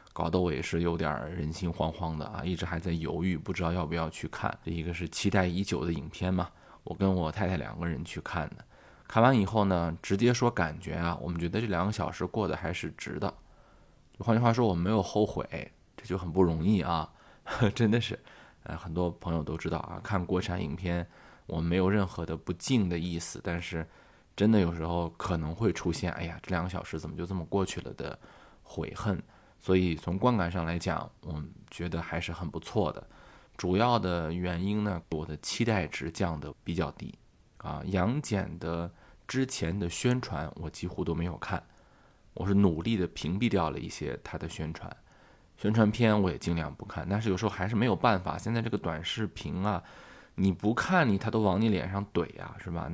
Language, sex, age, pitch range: Chinese, male, 20-39, 85-100 Hz